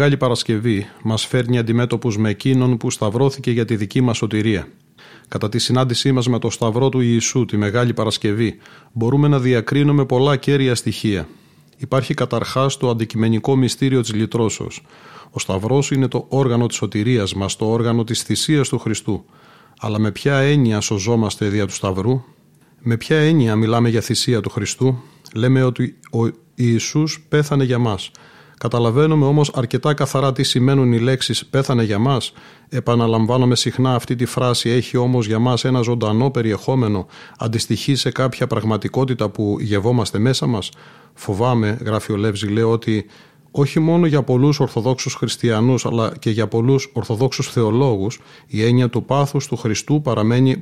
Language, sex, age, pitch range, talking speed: Greek, male, 40-59, 110-135 Hz, 165 wpm